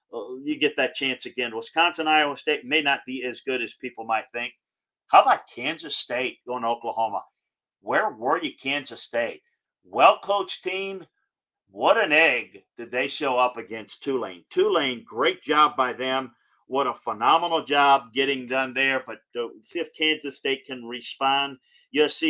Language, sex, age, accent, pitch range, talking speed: English, male, 40-59, American, 125-155 Hz, 160 wpm